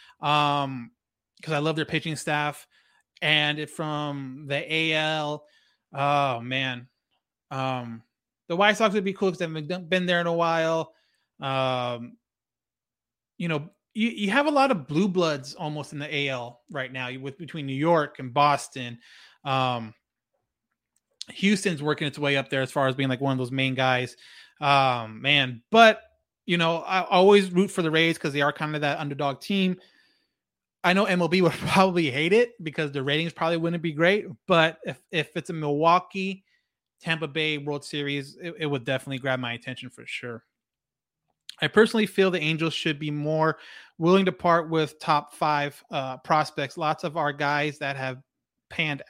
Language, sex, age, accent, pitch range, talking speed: English, male, 20-39, American, 140-175 Hz, 175 wpm